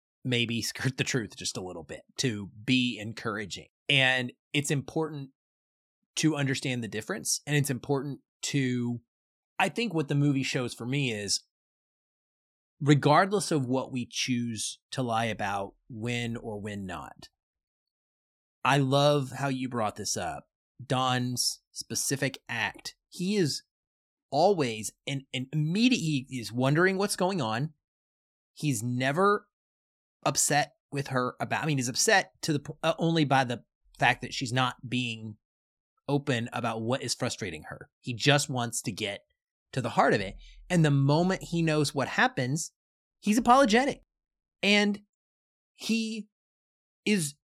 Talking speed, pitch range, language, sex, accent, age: 140 wpm, 120-180 Hz, English, male, American, 30-49